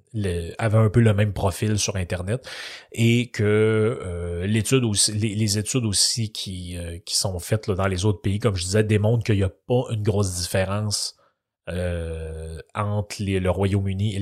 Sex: male